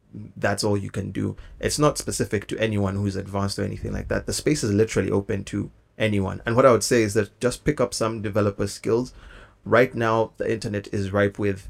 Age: 20-39